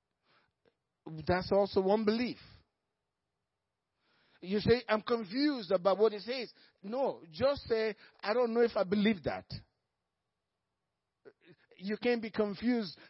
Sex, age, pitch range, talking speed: male, 50-69, 195-245 Hz, 120 wpm